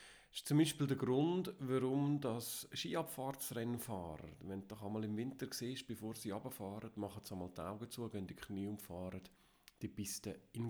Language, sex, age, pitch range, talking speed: German, male, 40-59, 105-135 Hz, 175 wpm